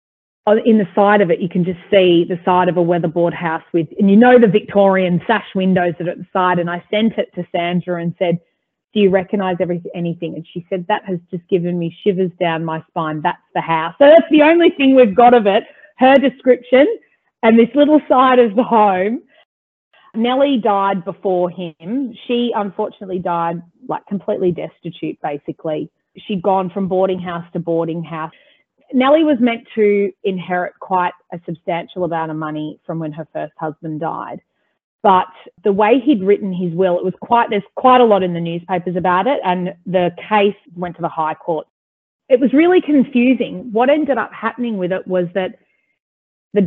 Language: English